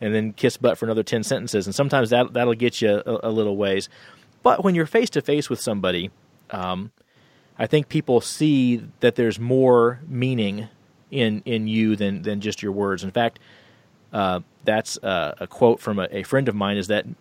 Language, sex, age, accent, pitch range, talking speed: English, male, 40-59, American, 105-130 Hz, 195 wpm